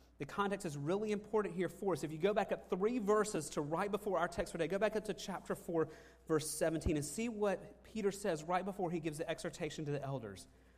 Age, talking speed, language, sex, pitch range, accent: 30-49, 240 wpm, English, male, 145-185 Hz, American